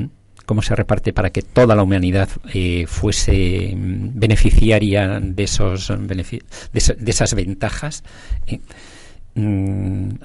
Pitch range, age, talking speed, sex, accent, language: 95-115 Hz, 50-69, 100 wpm, male, Spanish, Spanish